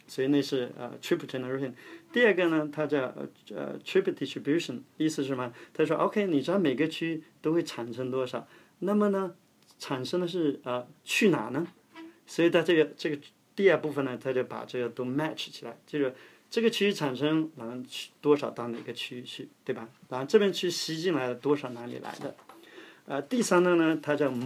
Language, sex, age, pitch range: Chinese, male, 30-49, 130-165 Hz